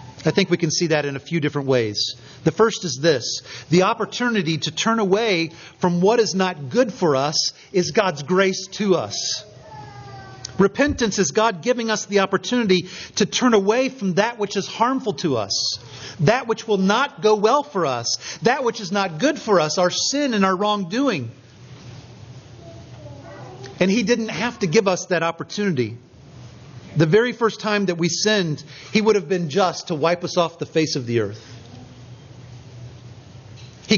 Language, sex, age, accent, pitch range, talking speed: English, male, 40-59, American, 135-215 Hz, 175 wpm